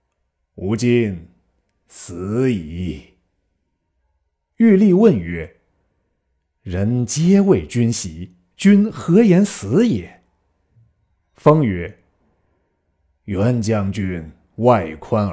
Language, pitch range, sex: Chinese, 85-125 Hz, male